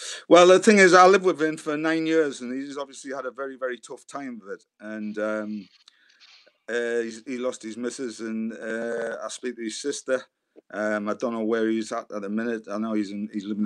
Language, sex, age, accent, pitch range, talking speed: English, male, 30-49, British, 105-130 Hz, 235 wpm